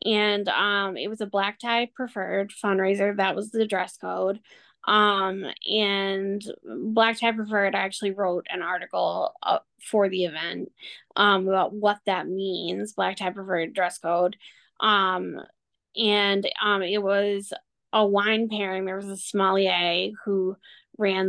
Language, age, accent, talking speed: English, 10-29, American, 145 wpm